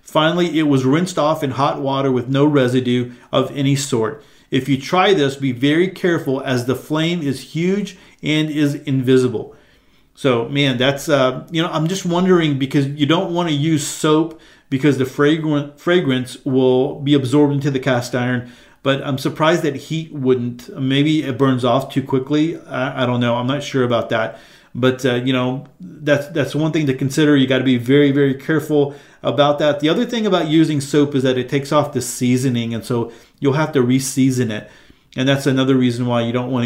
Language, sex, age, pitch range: English, male, 40-59, 130-150 Hz